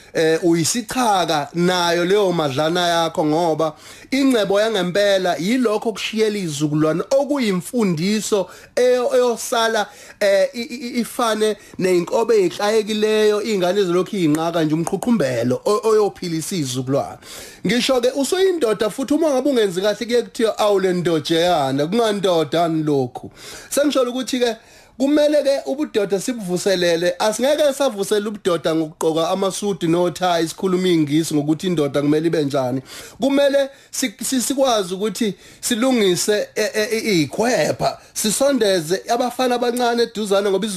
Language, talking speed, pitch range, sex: English, 130 wpm, 170-240 Hz, male